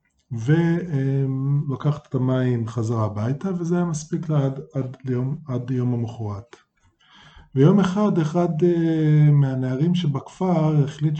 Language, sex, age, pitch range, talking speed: Hebrew, male, 20-39, 125-155 Hz, 100 wpm